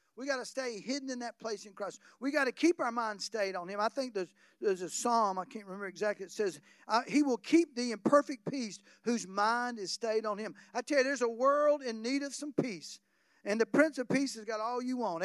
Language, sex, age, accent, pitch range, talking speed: English, male, 50-69, American, 205-270 Hz, 255 wpm